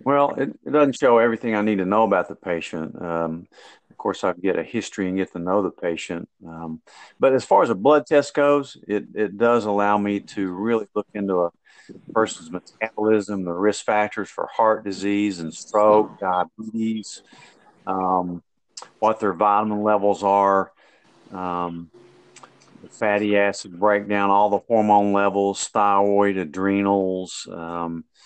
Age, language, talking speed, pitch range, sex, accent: 50-69, English, 160 wpm, 95-110 Hz, male, American